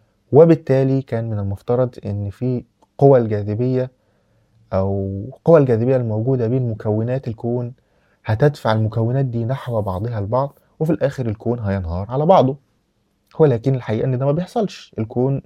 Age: 20-39